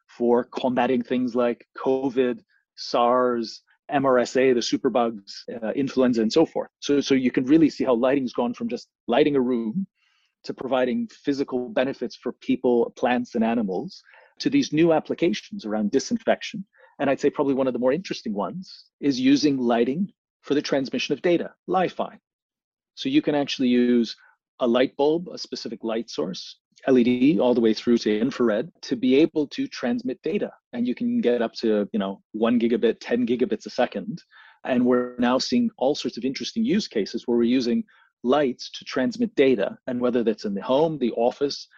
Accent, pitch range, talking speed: Canadian, 120-155 Hz, 180 wpm